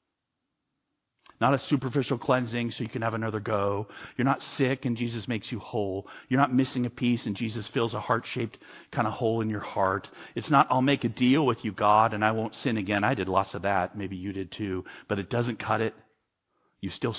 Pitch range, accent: 110-165 Hz, American